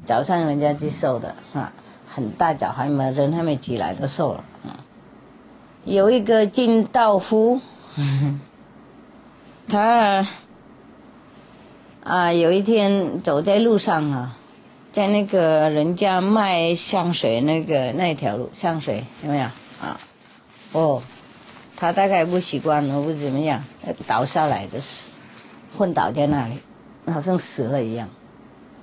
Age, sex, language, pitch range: 40-59, female, English, 145-200 Hz